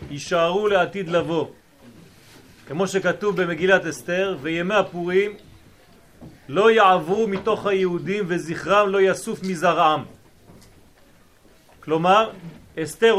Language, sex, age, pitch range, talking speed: French, male, 40-59, 175-220 Hz, 75 wpm